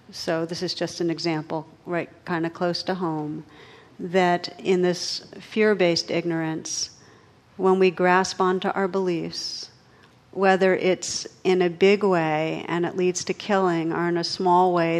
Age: 50-69